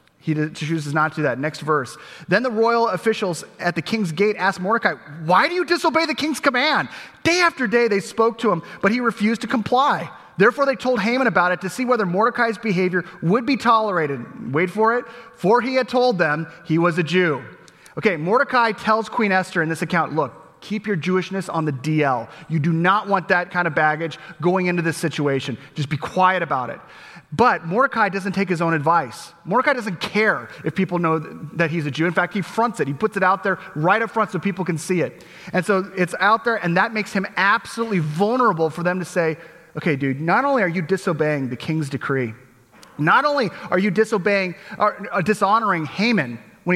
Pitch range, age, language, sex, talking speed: 160-220 Hz, 30-49, English, male, 210 wpm